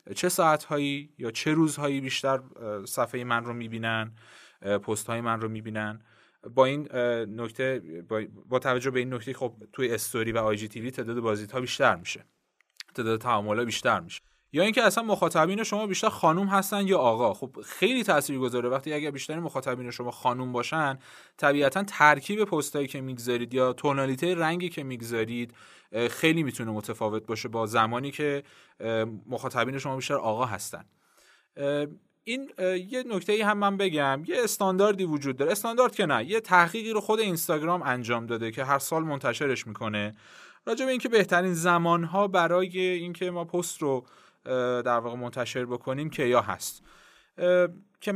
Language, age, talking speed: Persian, 30-49, 155 wpm